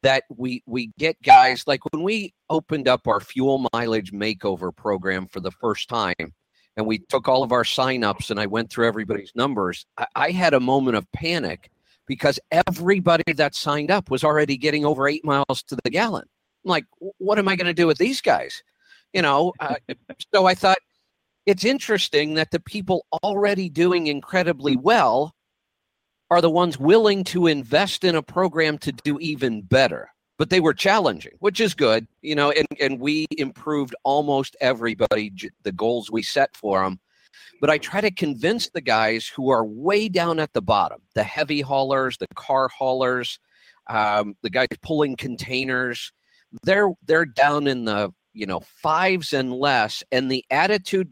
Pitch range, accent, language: 125-175 Hz, American, English